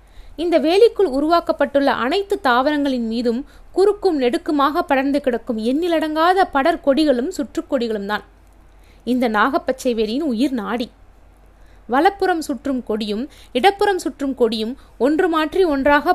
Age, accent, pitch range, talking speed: 20-39, native, 240-315 Hz, 105 wpm